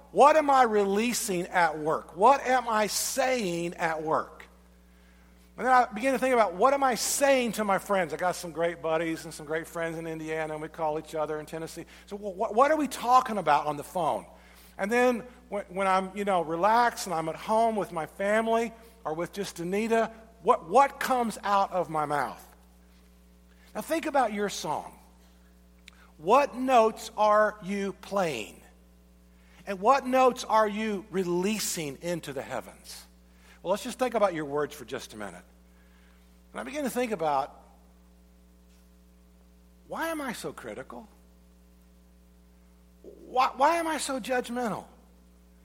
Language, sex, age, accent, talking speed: English, male, 50-69, American, 165 wpm